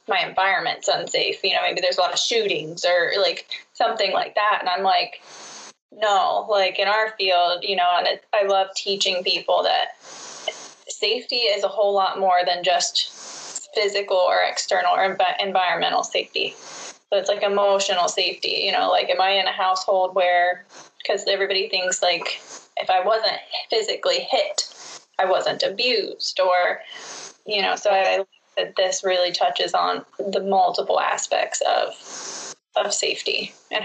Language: English